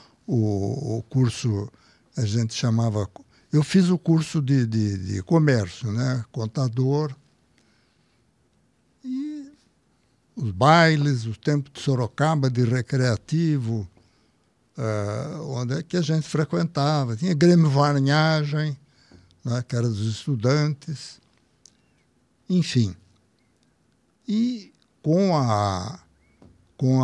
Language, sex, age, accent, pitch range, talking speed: Portuguese, male, 60-79, Brazilian, 115-155 Hz, 100 wpm